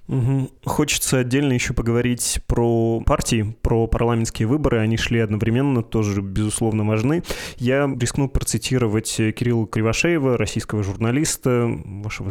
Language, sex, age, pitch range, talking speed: Russian, male, 20-39, 115-135 Hz, 120 wpm